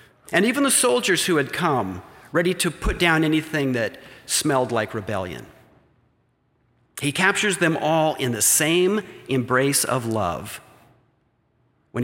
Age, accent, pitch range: 50-69, American, 120-160 Hz